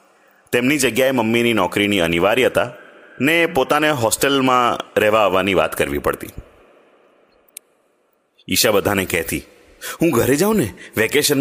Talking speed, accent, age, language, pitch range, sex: 110 wpm, native, 30-49, Gujarati, 120-180 Hz, male